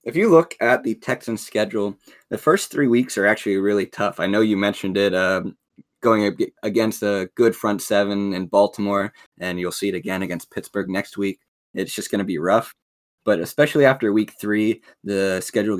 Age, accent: 20-39, American